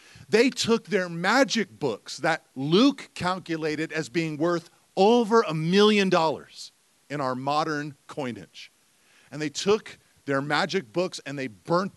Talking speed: 140 wpm